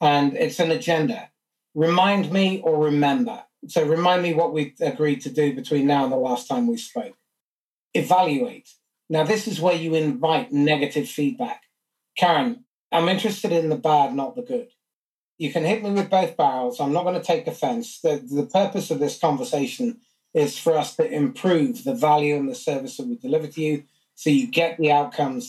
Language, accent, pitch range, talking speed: English, British, 150-235 Hz, 190 wpm